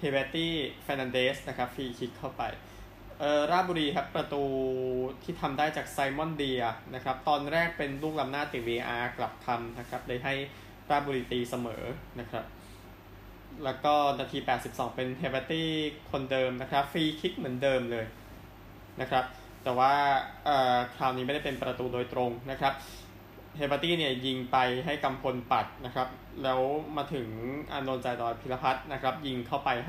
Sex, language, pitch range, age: male, Thai, 120-145 Hz, 20-39